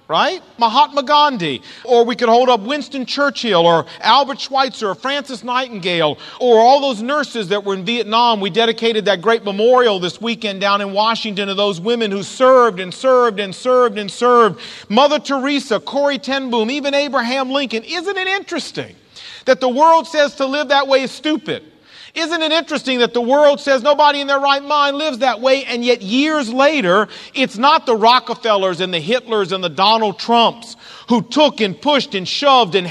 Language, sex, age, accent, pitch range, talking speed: English, male, 40-59, American, 215-280 Hz, 185 wpm